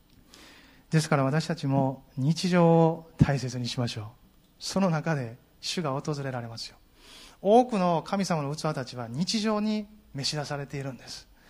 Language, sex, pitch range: Japanese, male, 135-175 Hz